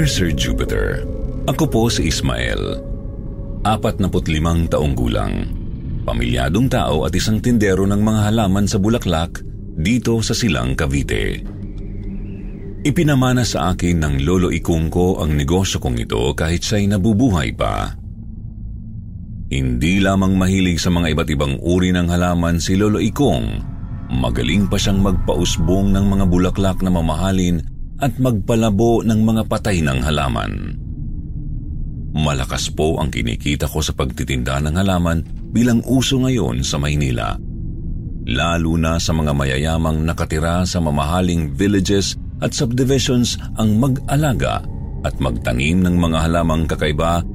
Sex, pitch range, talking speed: male, 80-105 Hz, 125 wpm